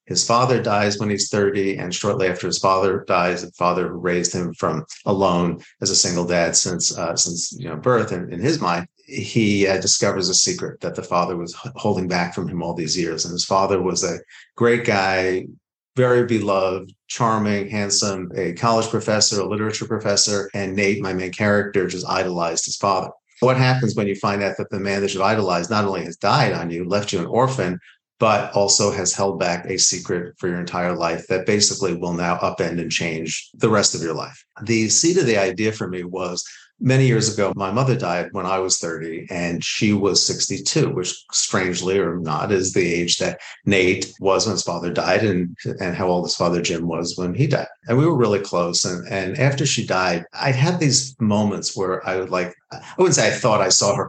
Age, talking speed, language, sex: 40-59, 215 wpm, English, male